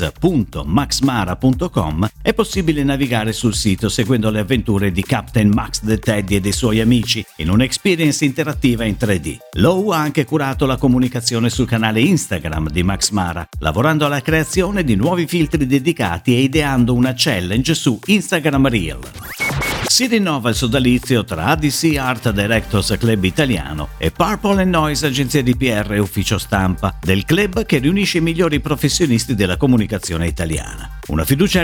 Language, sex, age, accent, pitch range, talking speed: Italian, male, 50-69, native, 105-155 Hz, 150 wpm